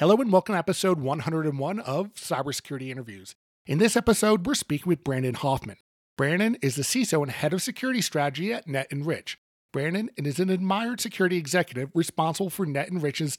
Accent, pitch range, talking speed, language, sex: American, 140-195 Hz, 165 wpm, English, male